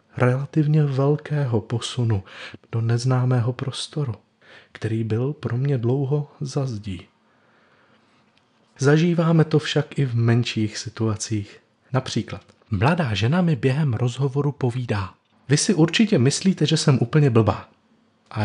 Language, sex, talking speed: Czech, male, 115 wpm